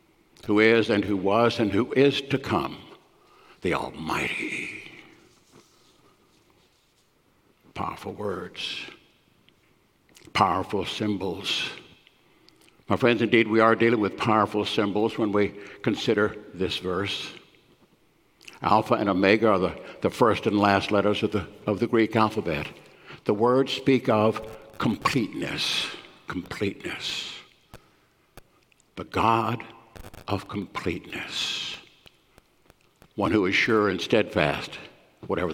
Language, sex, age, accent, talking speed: English, male, 60-79, American, 105 wpm